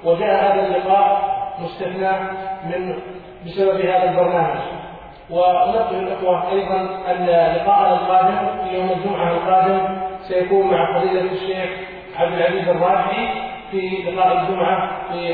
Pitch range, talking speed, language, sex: 175-190 Hz, 115 wpm, Arabic, male